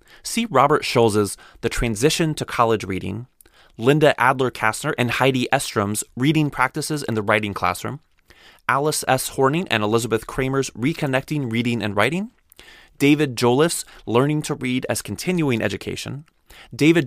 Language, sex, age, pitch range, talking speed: English, male, 20-39, 105-145 Hz, 135 wpm